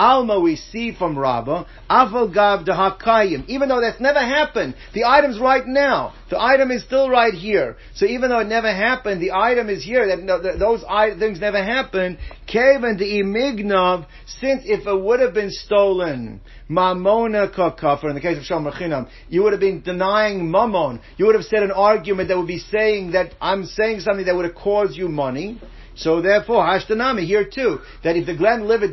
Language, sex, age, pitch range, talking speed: English, male, 50-69, 180-220 Hz, 185 wpm